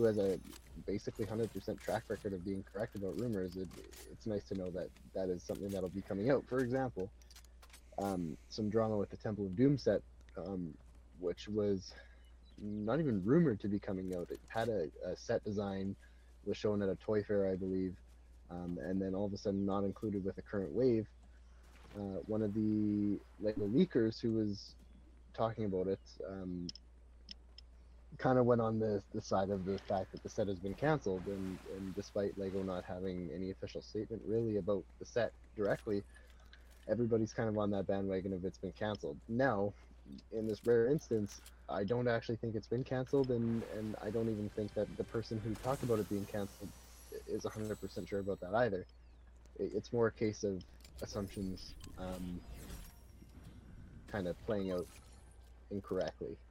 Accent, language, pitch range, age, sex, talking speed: American, English, 90-110 Hz, 20-39, male, 180 wpm